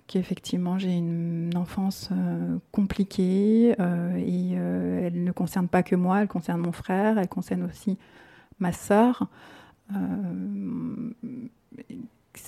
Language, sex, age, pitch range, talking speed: French, female, 30-49, 180-200 Hz, 120 wpm